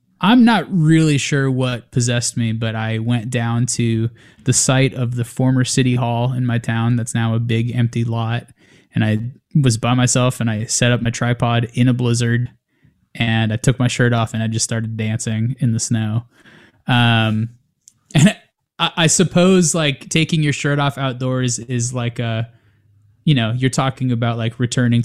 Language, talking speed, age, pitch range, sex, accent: English, 185 wpm, 20-39, 115-130 Hz, male, American